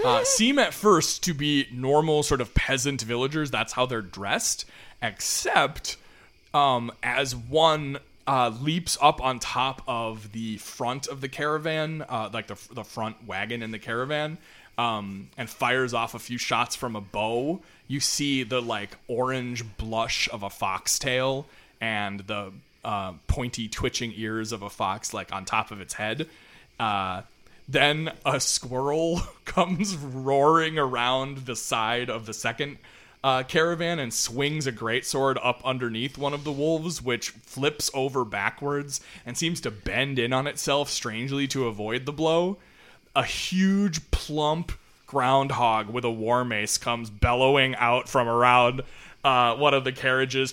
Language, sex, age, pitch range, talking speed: English, male, 20-39, 115-145 Hz, 155 wpm